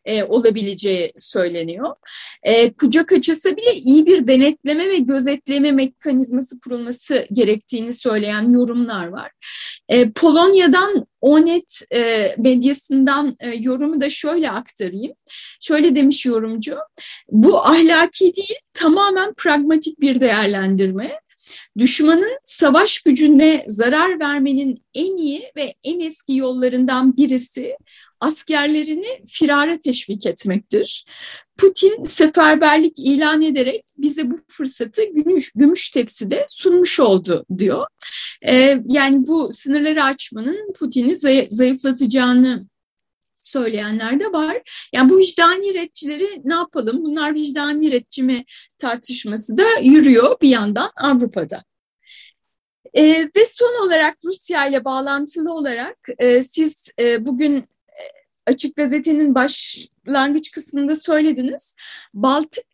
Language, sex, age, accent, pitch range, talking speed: Turkish, female, 30-49, native, 255-320 Hz, 105 wpm